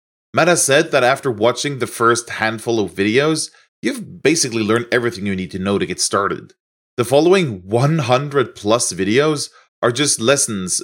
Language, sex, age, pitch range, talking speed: English, male, 30-49, 110-145 Hz, 160 wpm